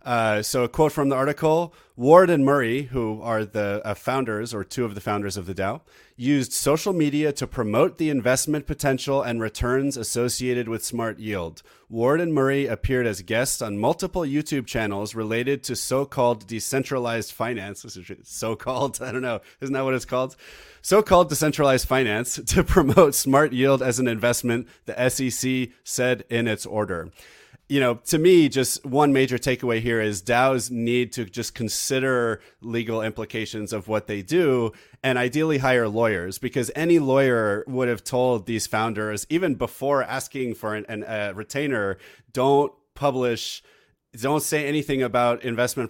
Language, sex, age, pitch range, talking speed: English, male, 30-49, 110-130 Hz, 160 wpm